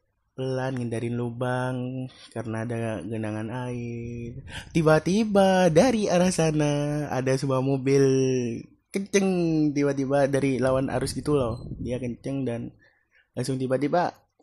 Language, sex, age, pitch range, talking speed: Indonesian, male, 20-39, 120-150 Hz, 105 wpm